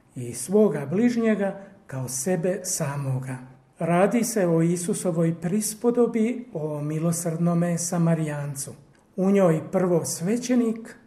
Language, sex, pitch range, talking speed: Croatian, male, 150-210 Hz, 100 wpm